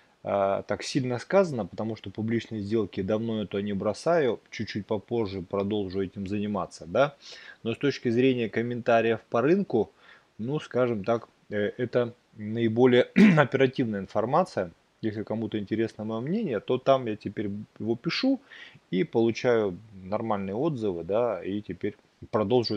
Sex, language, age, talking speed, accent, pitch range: male, Russian, 20-39, 135 wpm, native, 100-125 Hz